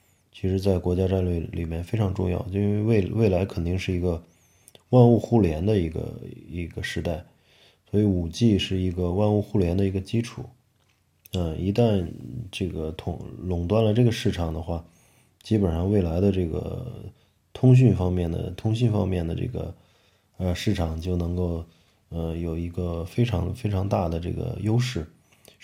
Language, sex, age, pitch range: Chinese, male, 20-39, 85-105 Hz